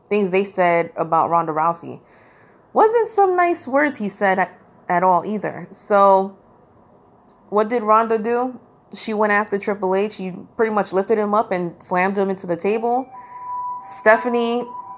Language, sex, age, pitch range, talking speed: English, female, 30-49, 180-235 Hz, 150 wpm